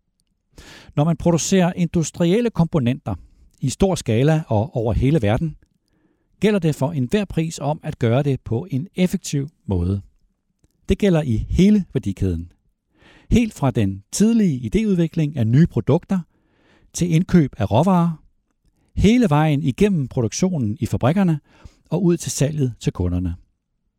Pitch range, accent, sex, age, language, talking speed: 115-170 Hz, native, male, 60-79, Danish, 135 wpm